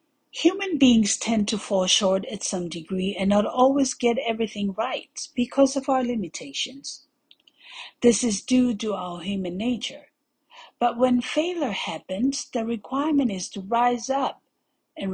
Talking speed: 145 wpm